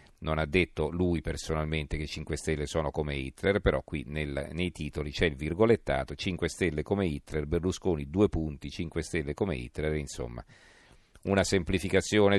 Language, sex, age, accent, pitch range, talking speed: Italian, male, 40-59, native, 85-105 Hz, 160 wpm